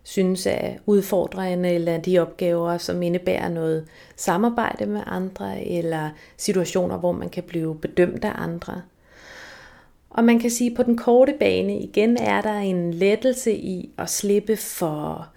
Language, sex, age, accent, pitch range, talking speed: Danish, female, 30-49, native, 175-210 Hz, 150 wpm